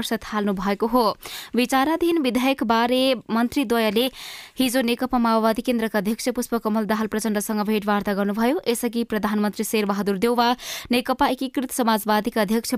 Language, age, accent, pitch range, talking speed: English, 20-39, Indian, 220-255 Hz, 115 wpm